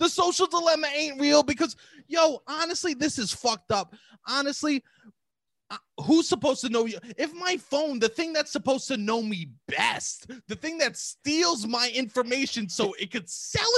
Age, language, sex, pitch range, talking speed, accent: 20-39, English, male, 265-335 Hz, 170 wpm, American